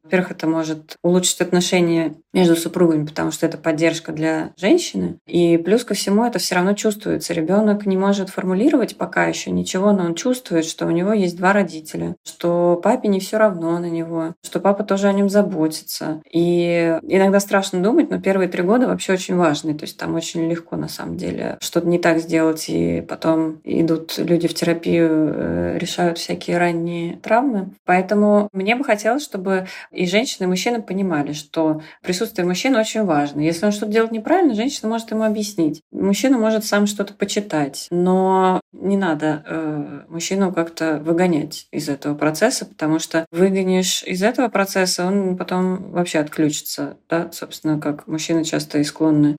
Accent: native